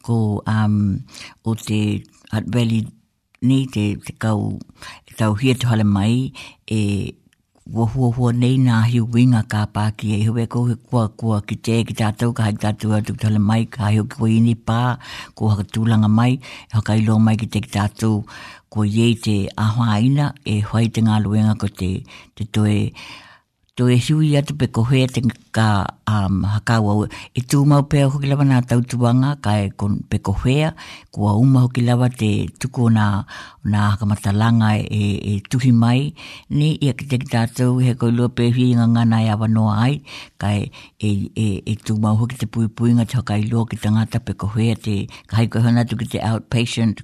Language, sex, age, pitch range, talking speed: English, female, 60-79, 105-120 Hz, 90 wpm